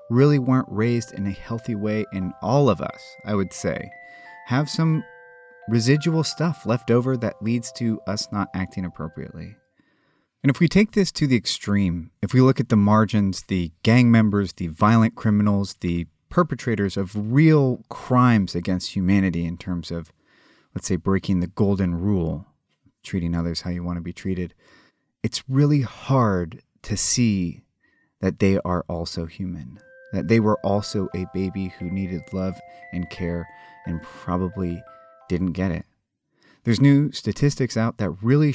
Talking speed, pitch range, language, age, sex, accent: 160 wpm, 95-135 Hz, English, 30-49, male, American